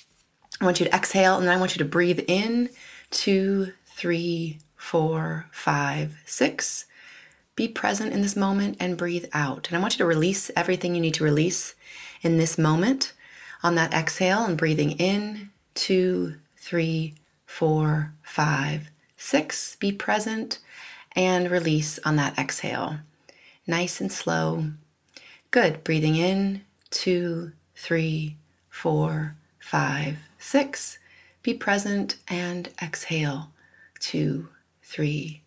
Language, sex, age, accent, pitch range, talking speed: English, female, 30-49, American, 155-190 Hz, 125 wpm